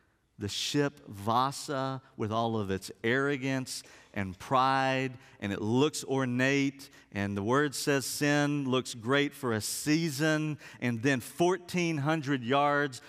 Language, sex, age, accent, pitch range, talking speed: English, male, 50-69, American, 115-150 Hz, 130 wpm